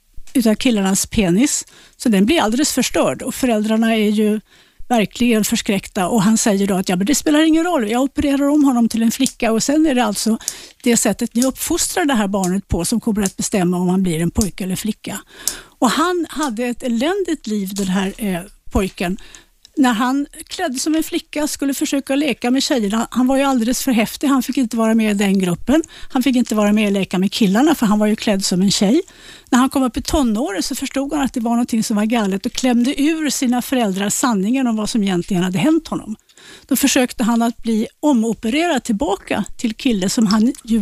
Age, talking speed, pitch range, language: 60-79, 220 wpm, 215-275 Hz, Swedish